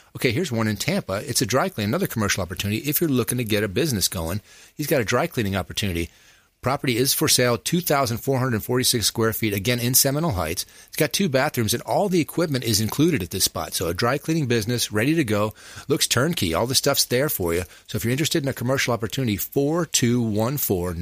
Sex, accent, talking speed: male, American, 215 wpm